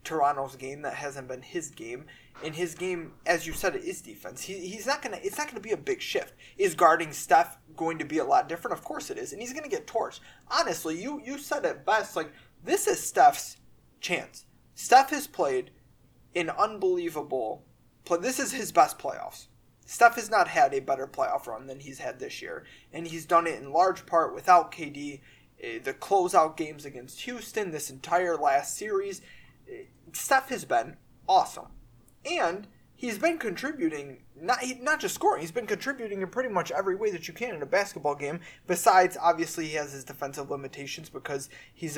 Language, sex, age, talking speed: English, male, 20-39, 200 wpm